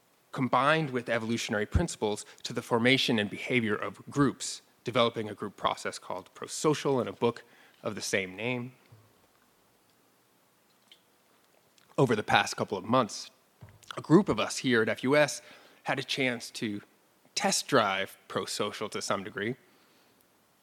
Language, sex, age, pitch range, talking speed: English, male, 30-49, 120-150 Hz, 135 wpm